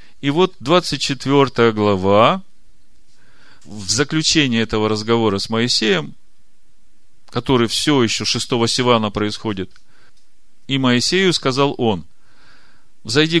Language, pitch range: Russian, 115-155 Hz